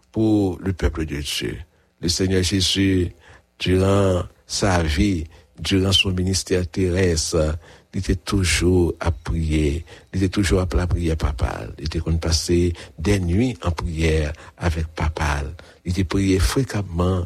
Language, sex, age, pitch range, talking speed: English, male, 60-79, 85-115 Hz, 135 wpm